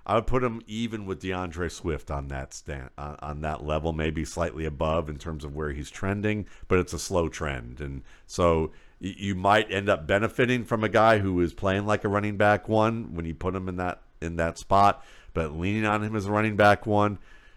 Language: English